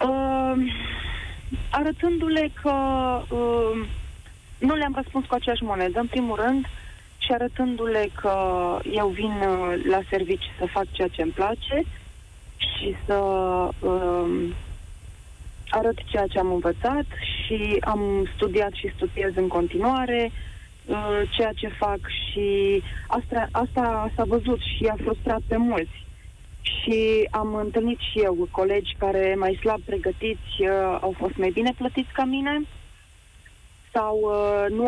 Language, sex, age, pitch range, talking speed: Romanian, female, 30-49, 190-240 Hz, 130 wpm